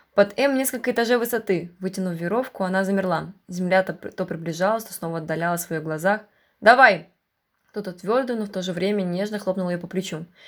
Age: 20-39